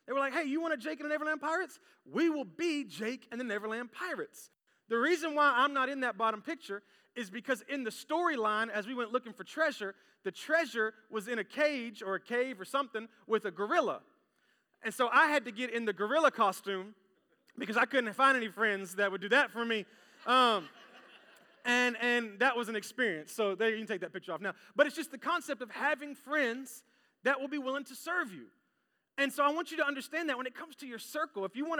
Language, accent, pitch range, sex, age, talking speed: English, American, 215-280 Hz, male, 30-49, 230 wpm